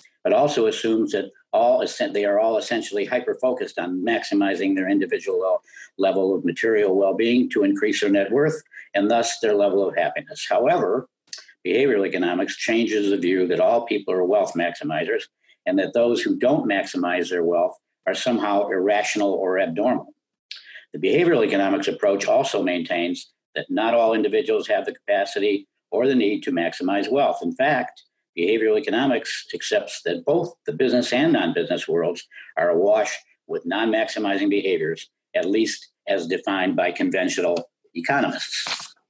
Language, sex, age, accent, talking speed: English, male, 50-69, American, 150 wpm